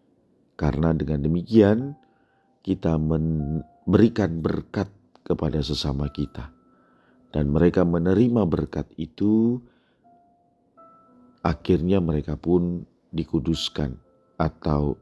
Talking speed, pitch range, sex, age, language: 75 wpm, 75-100 Hz, male, 40-59, Indonesian